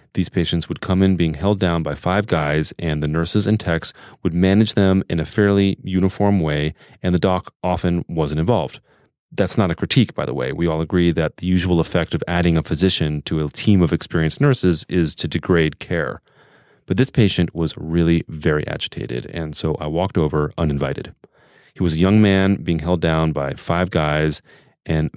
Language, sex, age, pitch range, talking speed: English, male, 30-49, 80-95 Hz, 200 wpm